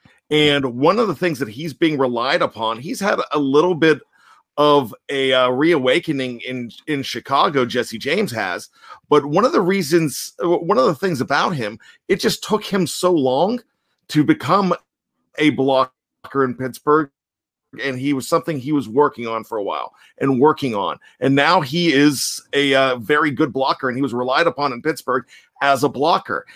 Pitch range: 135-175 Hz